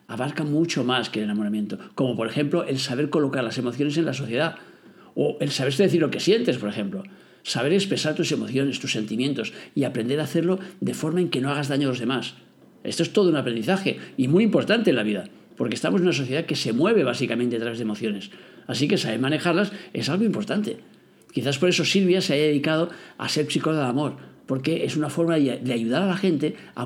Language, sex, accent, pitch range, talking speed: Spanish, male, Spanish, 125-170 Hz, 220 wpm